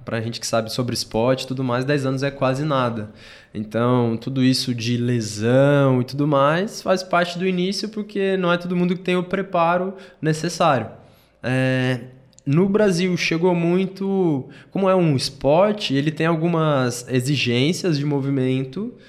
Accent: Brazilian